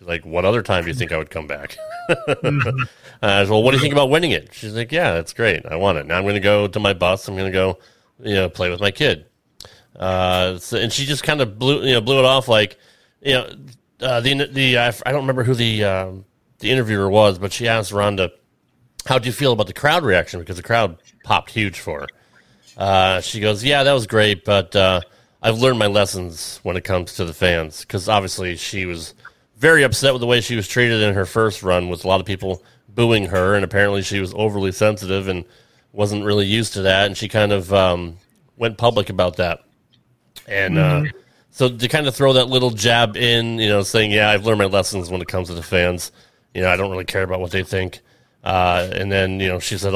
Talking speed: 240 wpm